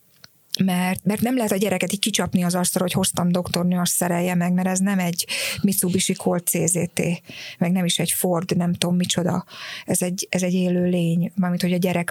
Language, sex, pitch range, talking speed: Hungarian, female, 175-190 Hz, 205 wpm